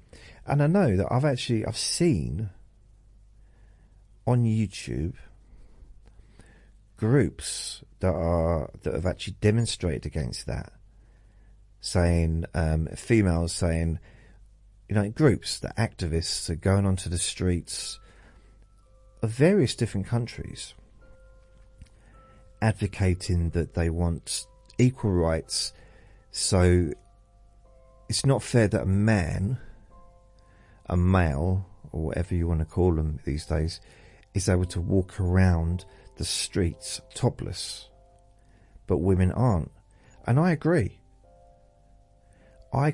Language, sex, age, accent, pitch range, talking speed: English, male, 40-59, British, 85-110 Hz, 105 wpm